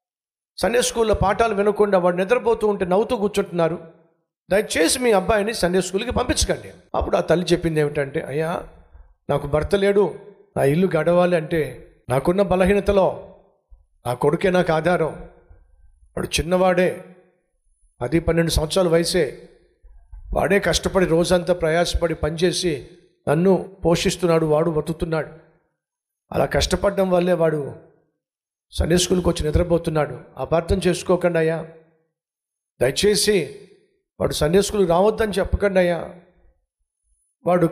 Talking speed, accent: 110 wpm, native